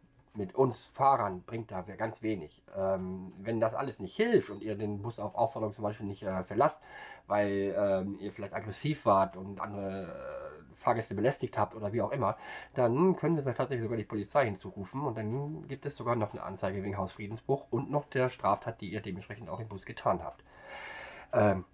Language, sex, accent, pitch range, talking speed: German, male, German, 100-125 Hz, 200 wpm